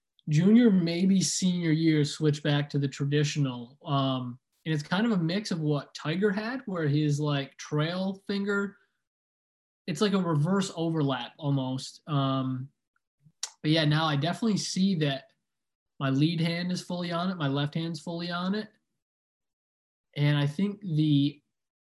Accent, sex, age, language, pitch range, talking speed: American, male, 20-39, English, 140-175 Hz, 155 wpm